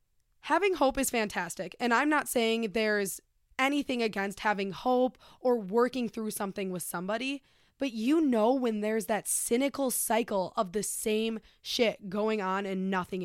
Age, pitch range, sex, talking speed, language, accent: 20-39, 205-260 Hz, female, 160 wpm, English, American